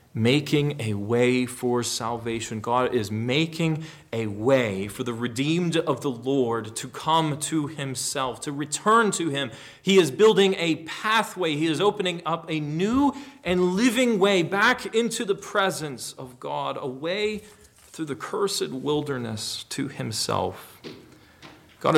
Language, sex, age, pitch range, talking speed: English, male, 30-49, 135-195 Hz, 145 wpm